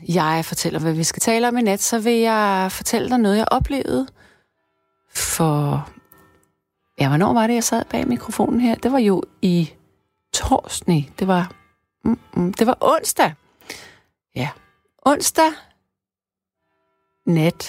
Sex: female